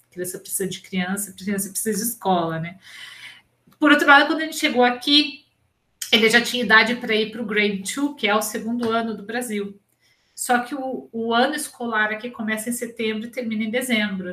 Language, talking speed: Portuguese, 200 wpm